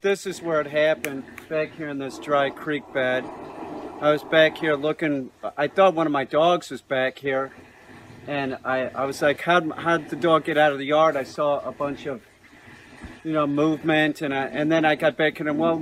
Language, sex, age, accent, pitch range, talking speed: English, male, 50-69, American, 145-175 Hz, 220 wpm